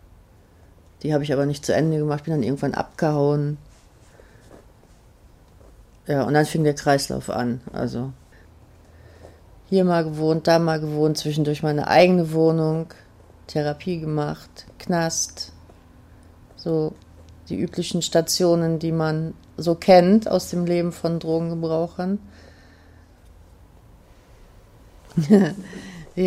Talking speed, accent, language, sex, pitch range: 105 wpm, German, German, female, 130-180 Hz